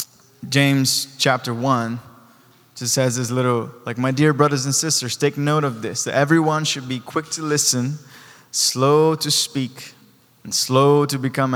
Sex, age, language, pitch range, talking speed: male, 20-39, English, 125-145 Hz, 160 wpm